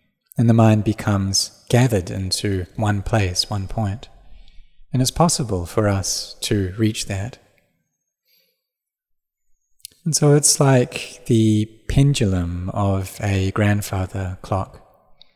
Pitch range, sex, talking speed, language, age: 100-120 Hz, male, 110 wpm, English, 20-39